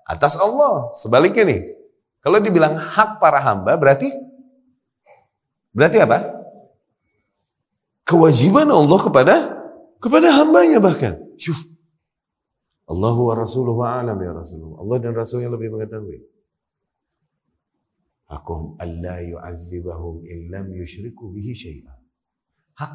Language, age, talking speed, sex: Indonesian, 30-49, 70 wpm, male